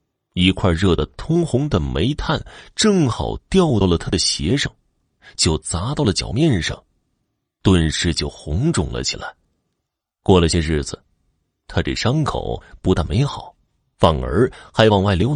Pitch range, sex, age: 85-115 Hz, male, 30-49